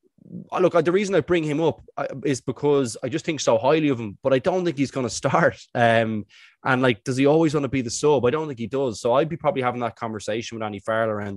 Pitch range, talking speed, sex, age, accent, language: 115-145 Hz, 275 wpm, male, 20-39, Irish, English